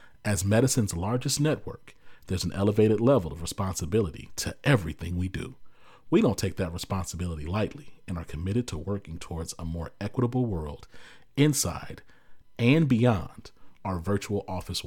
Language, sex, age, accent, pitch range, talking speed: English, male, 40-59, American, 90-125 Hz, 145 wpm